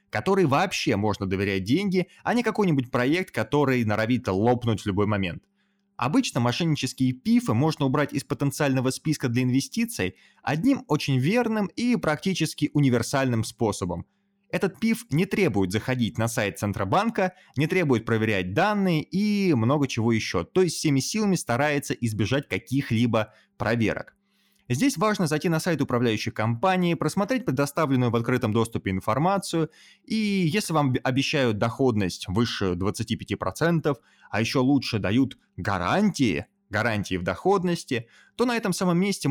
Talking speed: 135 wpm